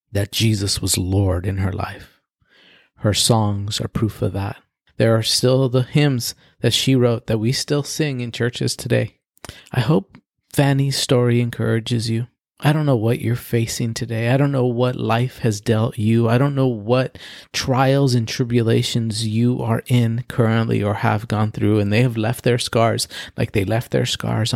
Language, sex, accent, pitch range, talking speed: English, male, American, 105-120 Hz, 185 wpm